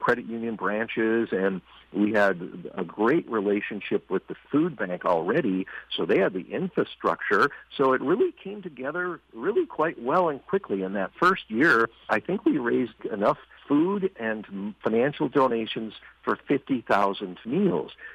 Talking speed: 150 wpm